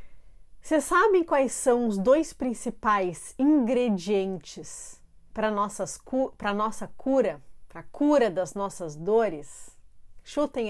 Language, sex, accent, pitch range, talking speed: Portuguese, female, Brazilian, 190-240 Hz, 105 wpm